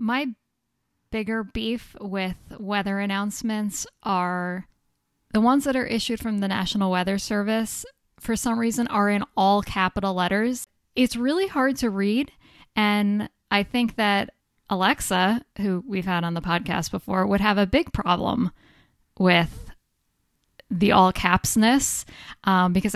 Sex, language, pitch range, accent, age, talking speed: female, English, 185-220 Hz, American, 10-29, 140 wpm